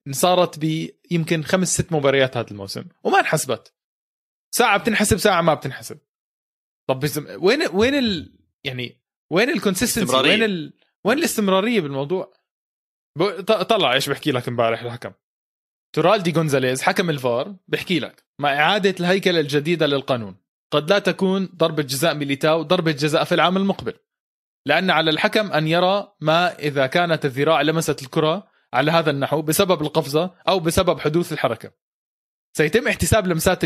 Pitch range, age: 140-190 Hz, 20-39